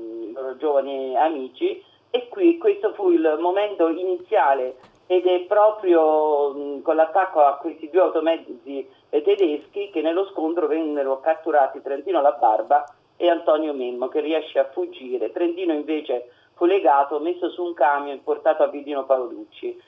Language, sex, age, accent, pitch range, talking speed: Italian, male, 40-59, native, 145-180 Hz, 140 wpm